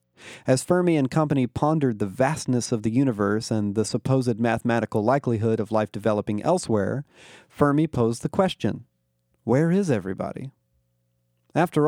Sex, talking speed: male, 135 wpm